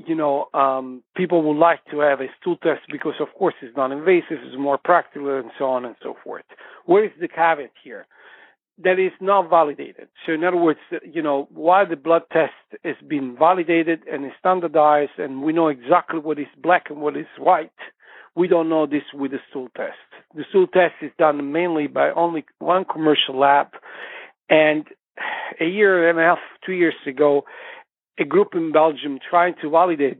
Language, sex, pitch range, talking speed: English, male, 140-170 Hz, 190 wpm